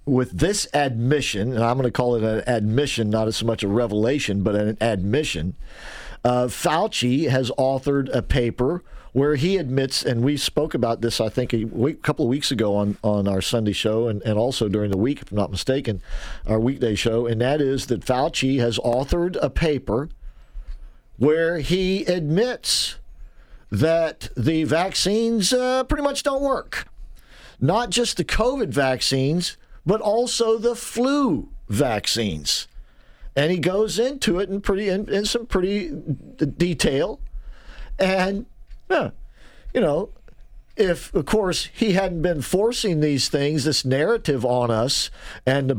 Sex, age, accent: male, 50-69, American